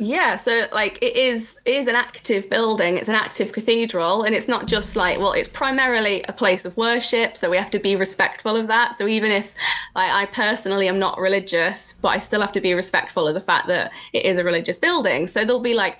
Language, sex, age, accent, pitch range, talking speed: English, female, 20-39, British, 185-225 Hz, 235 wpm